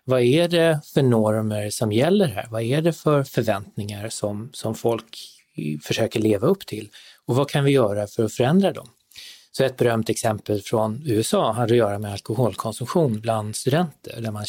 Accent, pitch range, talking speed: native, 110-135 Hz, 185 wpm